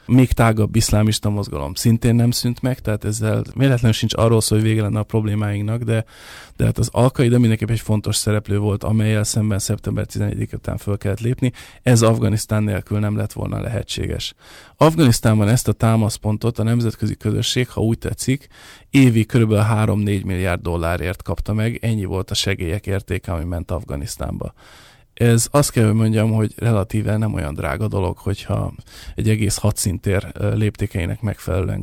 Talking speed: 160 wpm